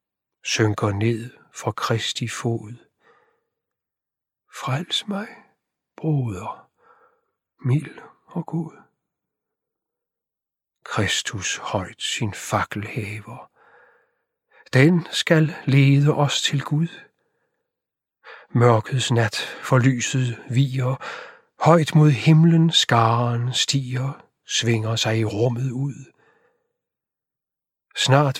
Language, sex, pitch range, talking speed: Danish, male, 115-145 Hz, 80 wpm